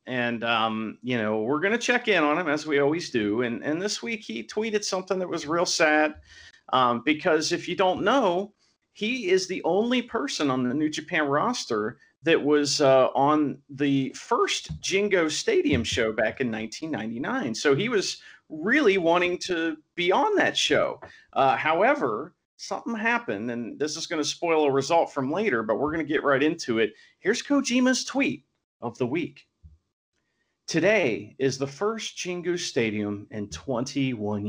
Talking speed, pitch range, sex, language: 175 wpm, 120-180 Hz, male, English